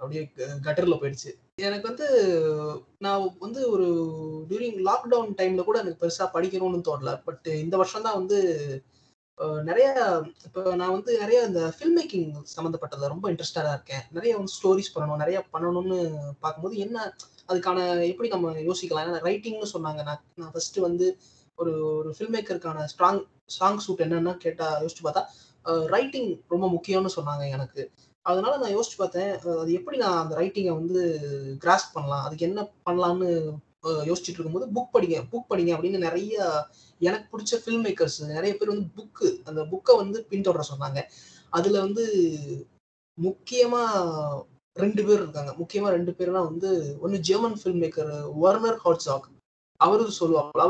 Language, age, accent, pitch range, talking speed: Tamil, 20-39, native, 160-195 Hz, 140 wpm